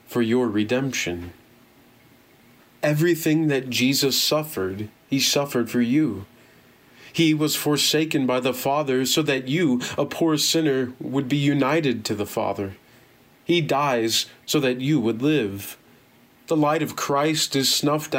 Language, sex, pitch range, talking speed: English, male, 120-145 Hz, 140 wpm